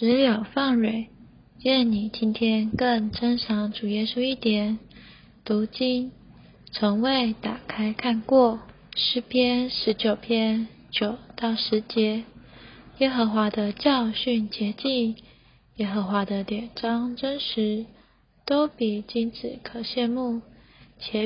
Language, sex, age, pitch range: Chinese, female, 20-39, 215-240 Hz